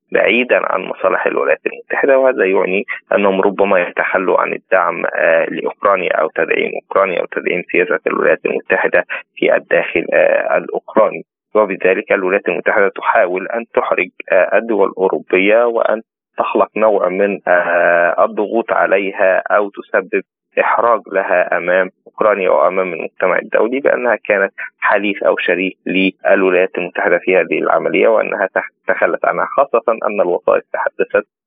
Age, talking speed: 20-39, 125 wpm